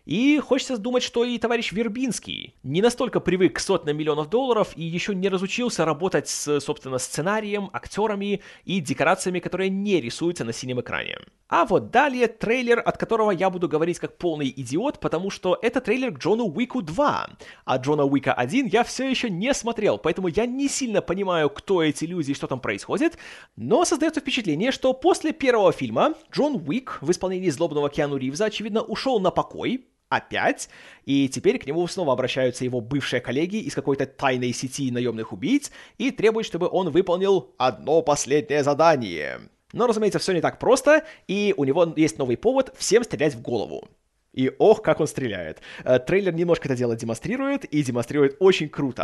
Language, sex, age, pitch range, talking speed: Russian, male, 30-49, 140-230 Hz, 175 wpm